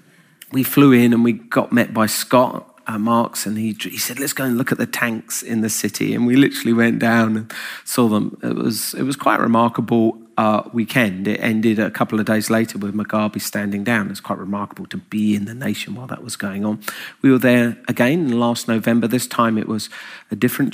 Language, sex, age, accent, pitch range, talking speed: English, male, 30-49, British, 105-120 Hz, 230 wpm